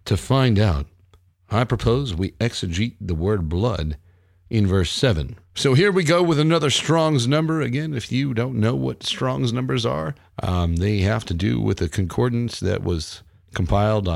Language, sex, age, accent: English, male, 40-59, American